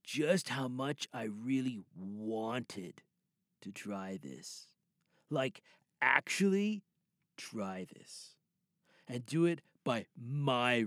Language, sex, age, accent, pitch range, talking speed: English, male, 40-59, American, 135-190 Hz, 100 wpm